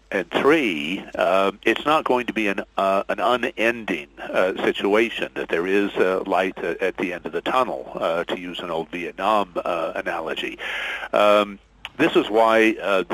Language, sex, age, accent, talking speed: English, male, 50-69, American, 175 wpm